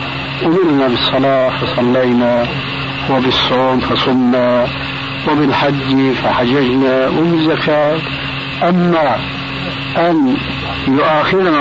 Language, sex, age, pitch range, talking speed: Arabic, male, 60-79, 125-150 Hz, 60 wpm